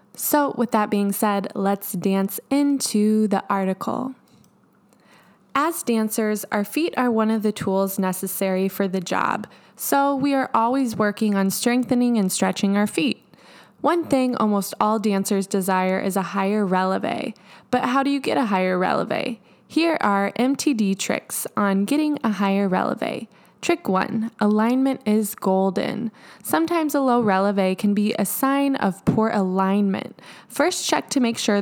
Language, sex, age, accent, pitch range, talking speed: English, female, 20-39, American, 195-245 Hz, 155 wpm